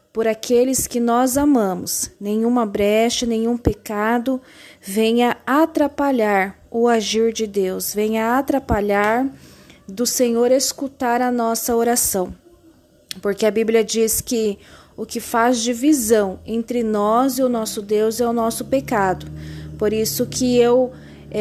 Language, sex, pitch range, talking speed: Portuguese, female, 220-255 Hz, 130 wpm